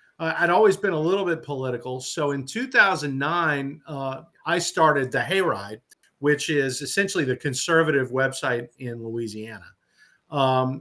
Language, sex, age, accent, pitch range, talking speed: English, male, 50-69, American, 135-165 Hz, 140 wpm